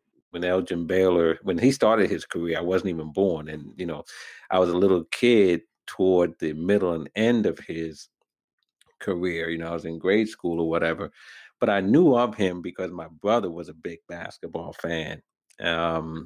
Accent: American